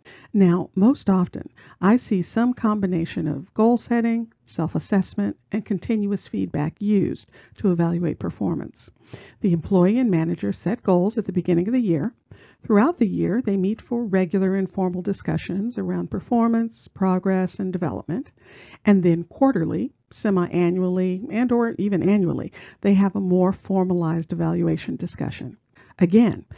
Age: 50-69